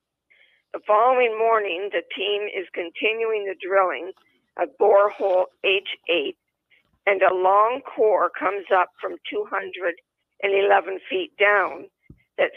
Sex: female